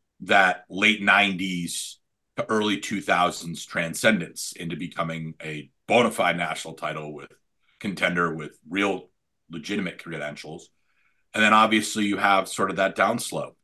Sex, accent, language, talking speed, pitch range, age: male, American, English, 130 wpm, 85-110 Hz, 40-59